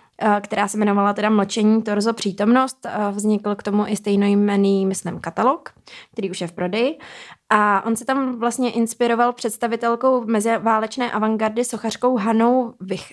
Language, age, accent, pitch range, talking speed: Czech, 20-39, native, 205-240 Hz, 145 wpm